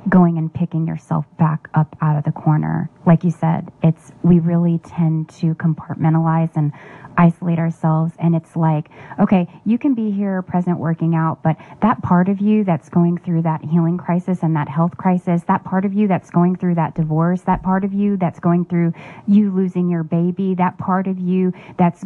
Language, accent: English, American